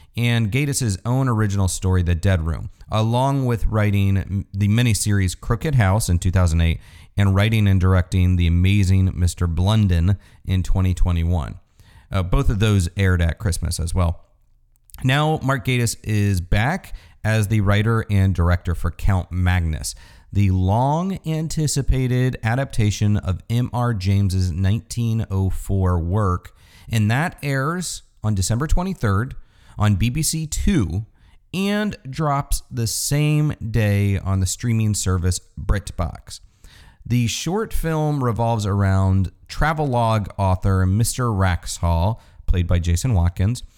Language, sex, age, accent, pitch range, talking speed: English, male, 40-59, American, 95-125 Hz, 120 wpm